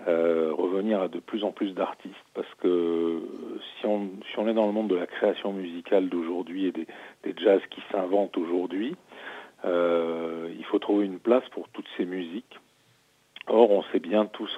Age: 40-59